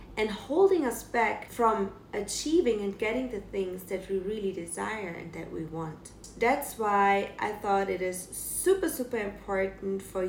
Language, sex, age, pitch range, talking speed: English, female, 30-49, 190-245 Hz, 165 wpm